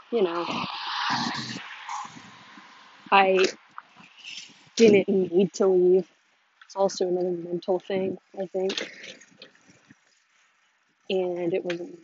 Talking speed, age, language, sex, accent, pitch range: 85 wpm, 20-39, English, female, American, 180-210 Hz